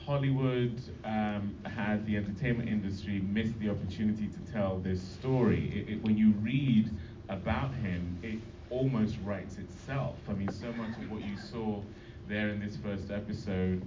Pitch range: 100-115 Hz